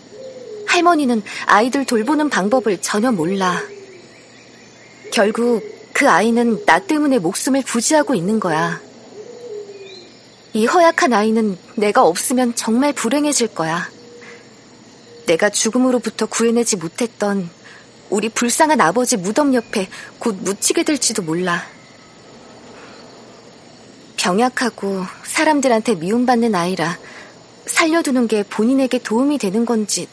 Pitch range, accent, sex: 210-275 Hz, native, female